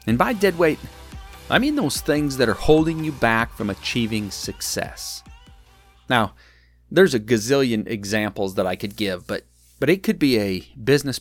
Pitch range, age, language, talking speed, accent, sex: 90-140 Hz, 30-49, English, 170 wpm, American, male